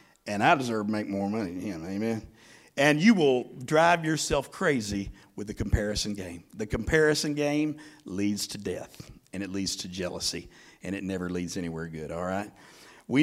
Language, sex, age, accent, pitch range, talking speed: English, male, 50-69, American, 110-150 Hz, 180 wpm